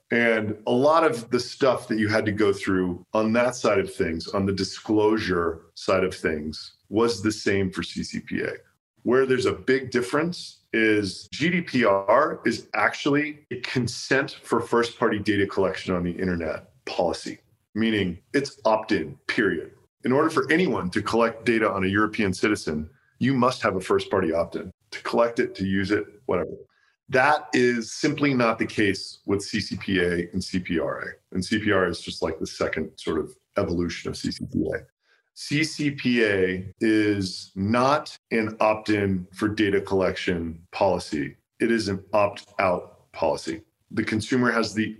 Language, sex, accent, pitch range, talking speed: English, male, American, 95-115 Hz, 155 wpm